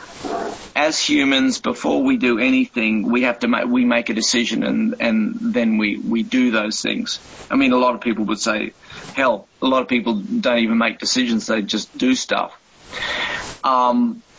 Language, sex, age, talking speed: English, male, 40-59, 185 wpm